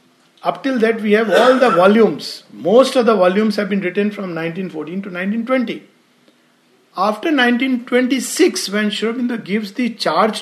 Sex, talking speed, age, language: male, 150 wpm, 60-79, English